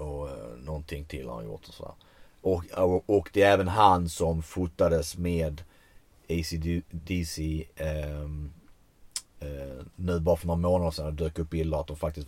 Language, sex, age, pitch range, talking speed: Swedish, male, 30-49, 80-100 Hz, 165 wpm